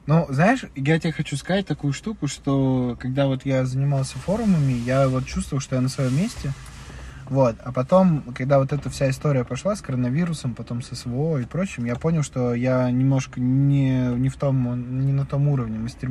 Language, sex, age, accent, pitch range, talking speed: Russian, male, 20-39, native, 125-145 Hz, 195 wpm